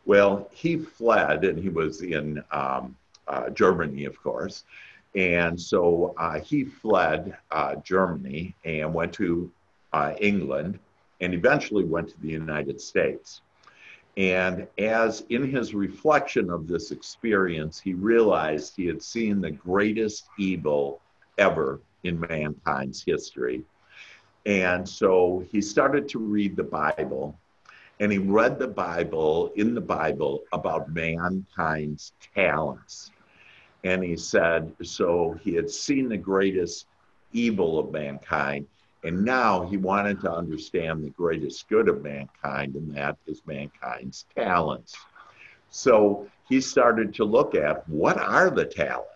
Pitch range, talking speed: 75-105 Hz, 130 wpm